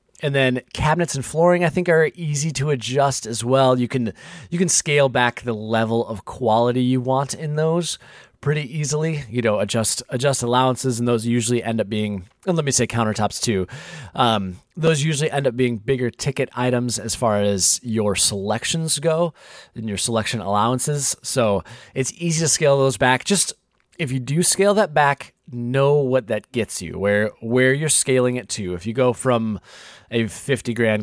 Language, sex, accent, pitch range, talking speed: English, male, American, 110-145 Hz, 190 wpm